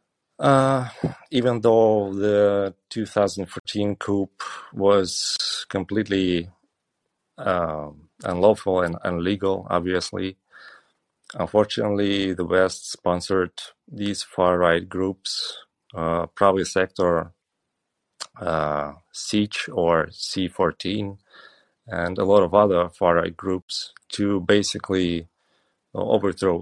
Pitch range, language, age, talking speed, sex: 85-100 Hz, English, 30-49, 90 wpm, male